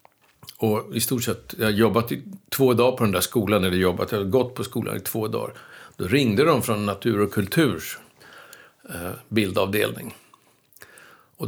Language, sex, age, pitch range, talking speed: English, male, 60-79, 100-120 Hz, 165 wpm